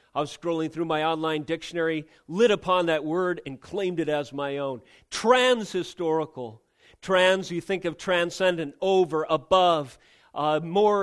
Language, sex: English, male